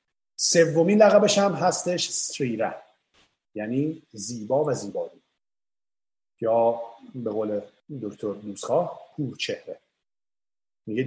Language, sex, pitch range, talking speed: Persian, male, 140-205 Hz, 90 wpm